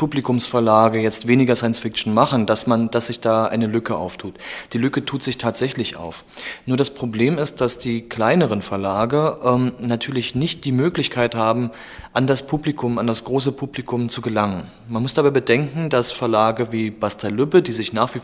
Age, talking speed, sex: 30-49, 180 wpm, male